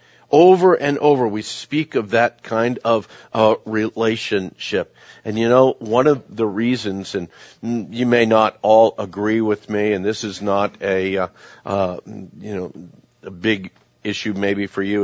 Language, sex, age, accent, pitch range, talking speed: English, male, 50-69, American, 95-120 Hz, 165 wpm